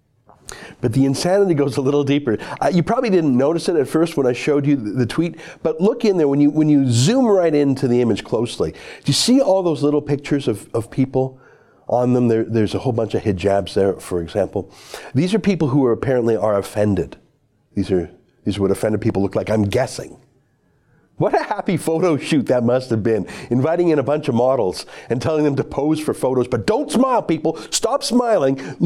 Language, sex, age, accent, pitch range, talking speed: English, male, 50-69, American, 120-170 Hz, 215 wpm